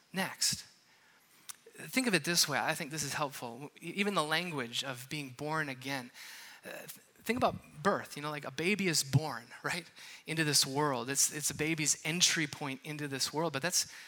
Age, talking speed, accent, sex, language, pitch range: 20-39, 190 wpm, American, male, English, 170-235 Hz